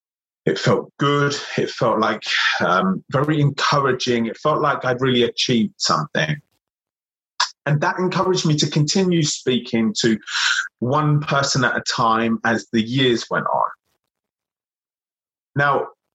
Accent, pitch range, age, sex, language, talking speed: British, 120-165 Hz, 30-49, male, English, 130 wpm